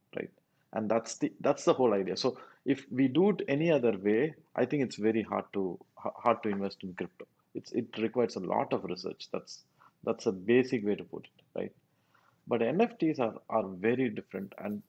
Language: English